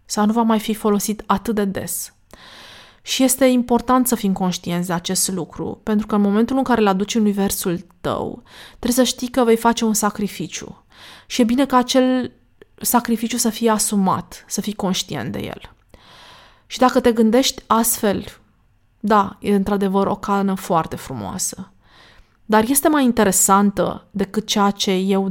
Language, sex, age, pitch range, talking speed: Romanian, female, 20-39, 195-235 Hz, 165 wpm